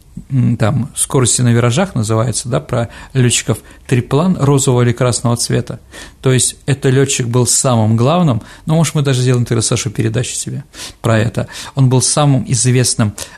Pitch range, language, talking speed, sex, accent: 115-140 Hz, Russian, 155 wpm, male, native